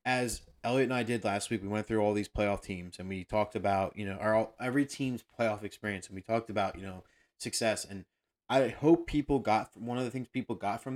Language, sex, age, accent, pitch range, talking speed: English, male, 30-49, American, 100-120 Hz, 245 wpm